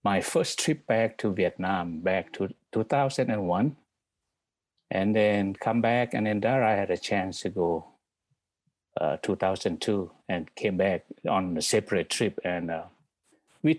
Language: English